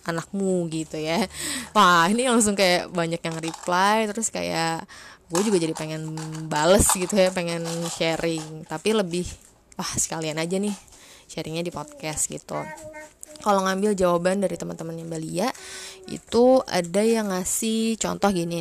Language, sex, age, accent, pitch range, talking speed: English, female, 20-39, Indonesian, 165-195 Hz, 140 wpm